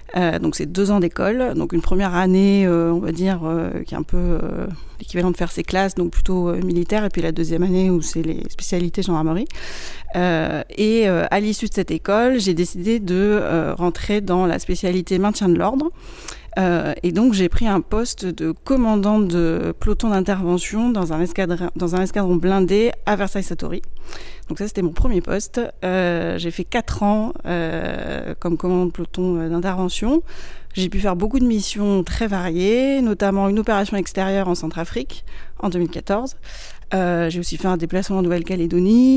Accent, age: French, 30-49